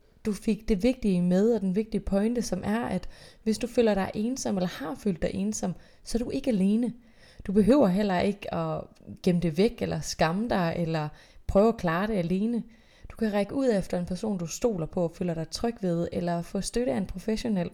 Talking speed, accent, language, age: 220 wpm, native, Danish, 20-39